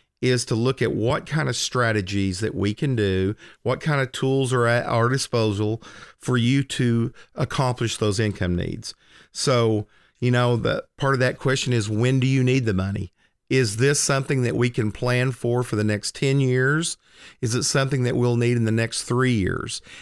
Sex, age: male, 40-59